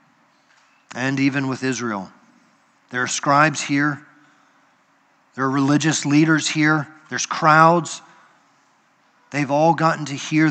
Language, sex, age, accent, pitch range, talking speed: English, male, 40-59, American, 120-155 Hz, 115 wpm